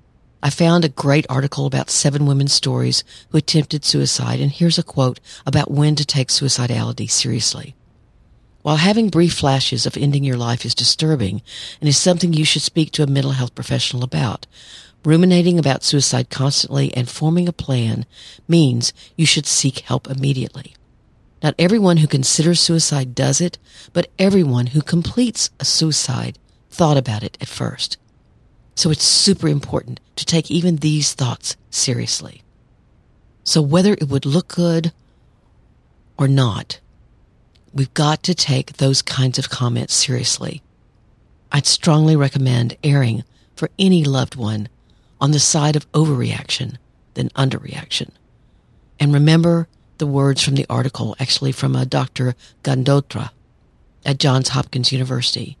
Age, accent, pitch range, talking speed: 50-69, American, 125-155 Hz, 145 wpm